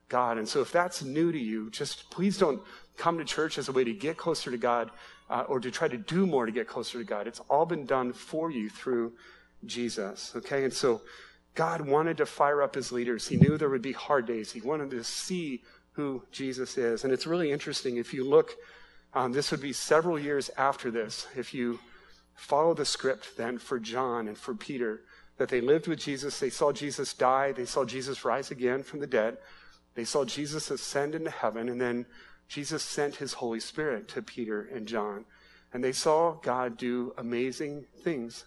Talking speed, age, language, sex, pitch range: 205 wpm, 40-59, English, male, 120-155 Hz